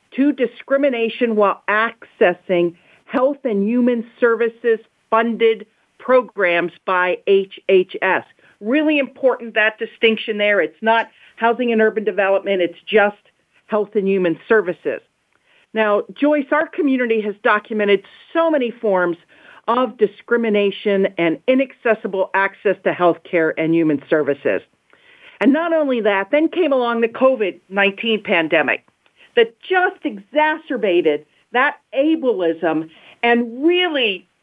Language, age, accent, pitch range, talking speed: English, 50-69, American, 200-280 Hz, 115 wpm